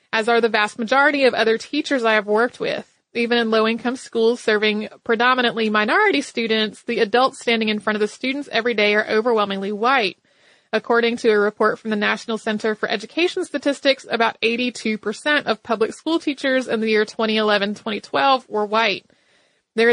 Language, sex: English, female